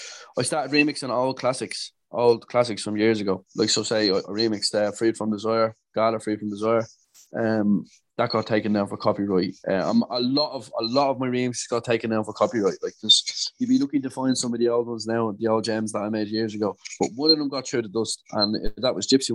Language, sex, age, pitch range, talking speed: English, male, 20-39, 105-125 Hz, 245 wpm